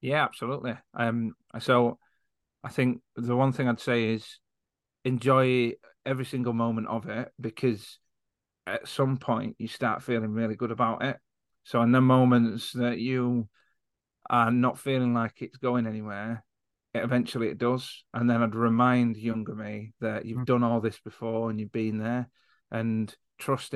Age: 30-49